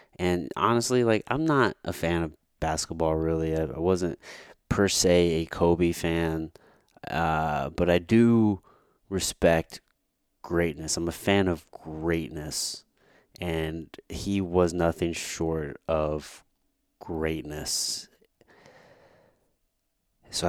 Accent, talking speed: American, 105 wpm